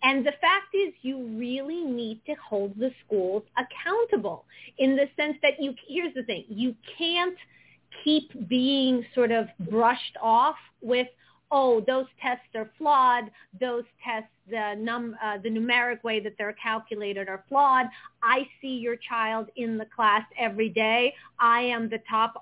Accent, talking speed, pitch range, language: American, 160 wpm, 230-280 Hz, English